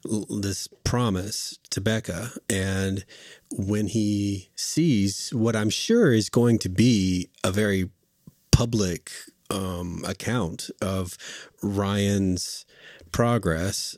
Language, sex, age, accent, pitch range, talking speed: English, male, 40-59, American, 90-110 Hz, 100 wpm